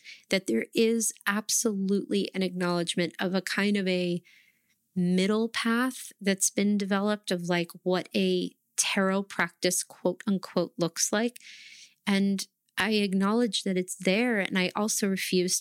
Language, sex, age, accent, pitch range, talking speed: English, female, 30-49, American, 175-220 Hz, 140 wpm